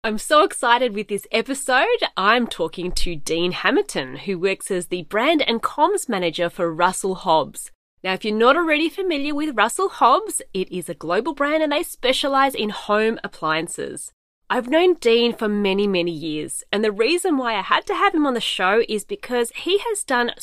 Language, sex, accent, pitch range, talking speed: English, female, Australian, 185-275 Hz, 195 wpm